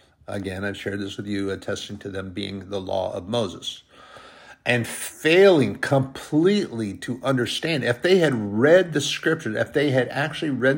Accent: American